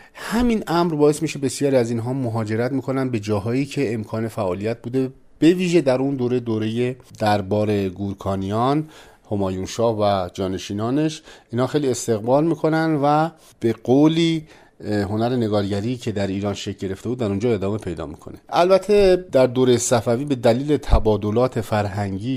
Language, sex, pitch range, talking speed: Persian, male, 95-130 Hz, 145 wpm